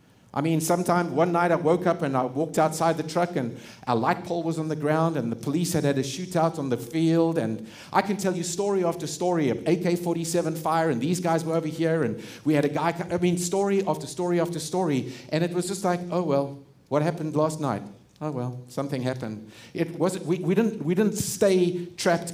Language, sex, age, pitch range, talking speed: English, male, 50-69, 140-175 Hz, 225 wpm